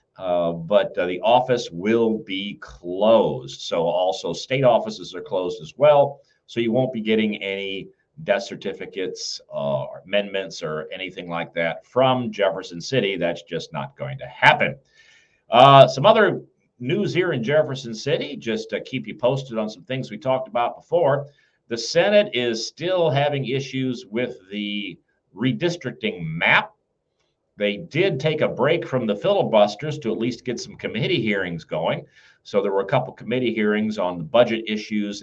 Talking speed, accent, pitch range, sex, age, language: 165 wpm, American, 105-130 Hz, male, 50-69, English